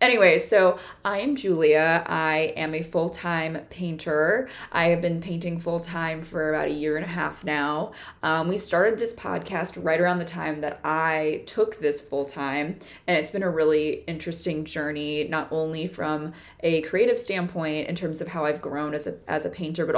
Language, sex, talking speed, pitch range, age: English, female, 185 wpm, 155-185 Hz, 20-39